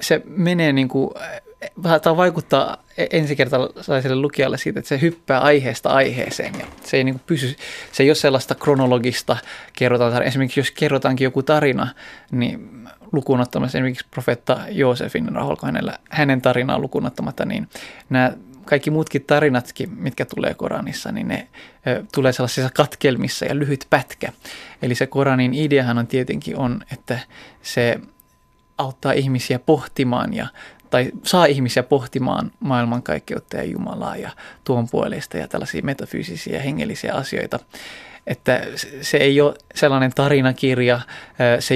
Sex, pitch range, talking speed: male, 125-145 Hz, 130 wpm